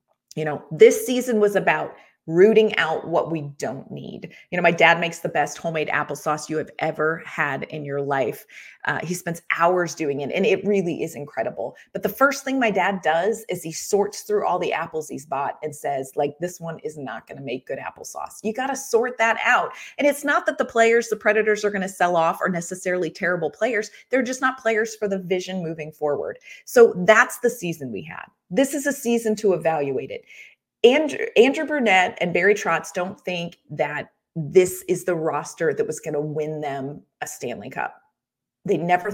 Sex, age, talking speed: female, 30-49, 205 wpm